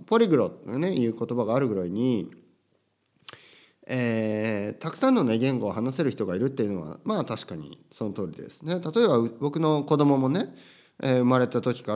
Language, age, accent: Japanese, 40-59, native